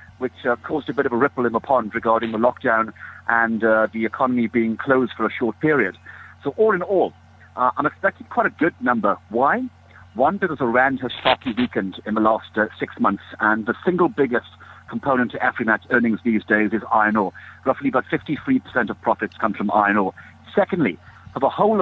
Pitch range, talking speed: 110-135 Hz, 205 wpm